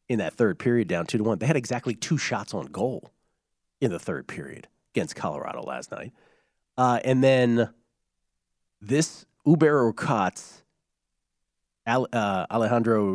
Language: English